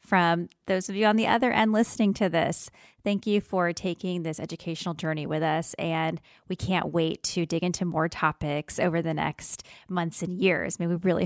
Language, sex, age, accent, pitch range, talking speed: English, female, 20-39, American, 170-205 Hz, 210 wpm